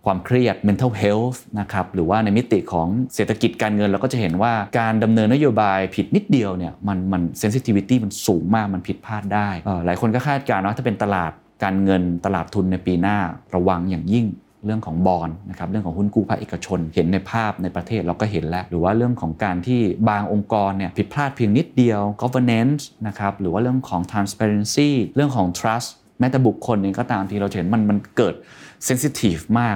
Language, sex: Thai, male